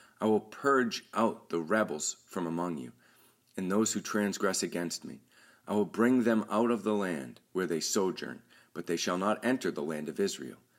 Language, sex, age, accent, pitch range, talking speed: English, male, 40-59, American, 85-115 Hz, 195 wpm